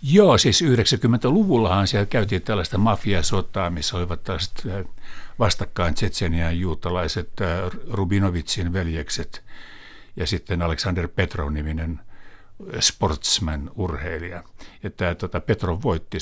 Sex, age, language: male, 60-79, Finnish